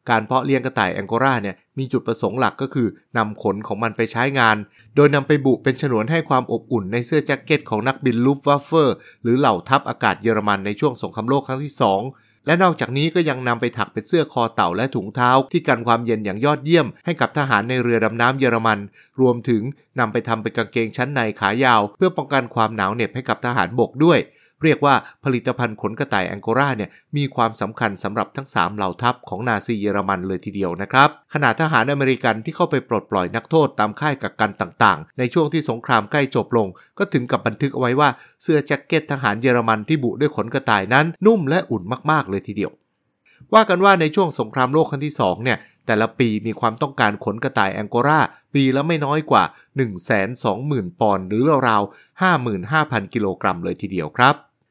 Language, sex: English, male